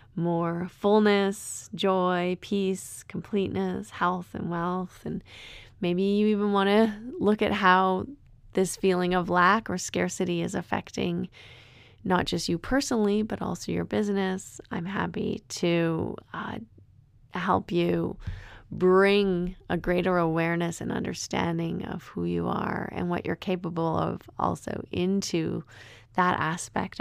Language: English